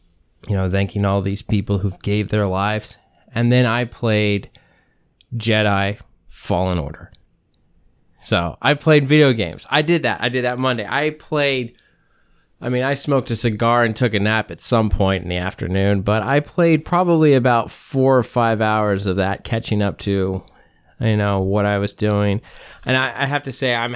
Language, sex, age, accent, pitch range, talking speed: English, male, 20-39, American, 105-125 Hz, 190 wpm